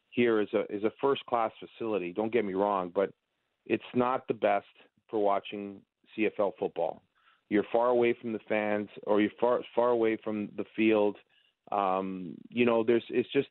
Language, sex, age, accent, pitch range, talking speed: English, male, 30-49, American, 105-120 Hz, 180 wpm